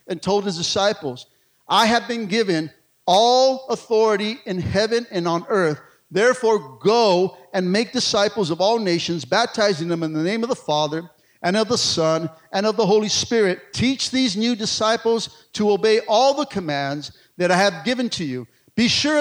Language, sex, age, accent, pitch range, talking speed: English, male, 50-69, American, 175-240 Hz, 180 wpm